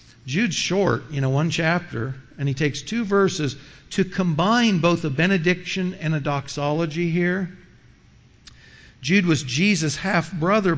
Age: 50-69